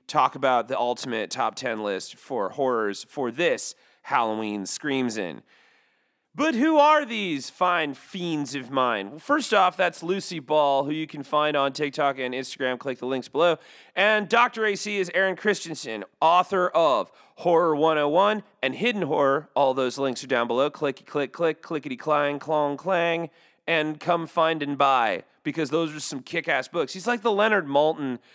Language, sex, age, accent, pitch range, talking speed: English, male, 30-49, American, 135-170 Hz, 170 wpm